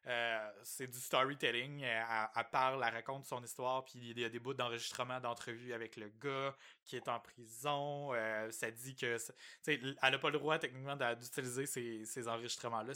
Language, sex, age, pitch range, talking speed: French, male, 20-39, 120-140 Hz, 190 wpm